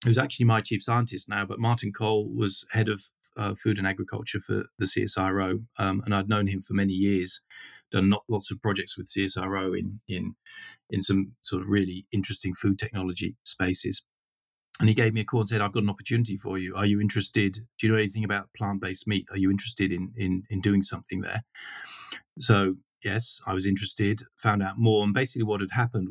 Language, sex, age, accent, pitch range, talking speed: English, male, 40-59, British, 95-110 Hz, 210 wpm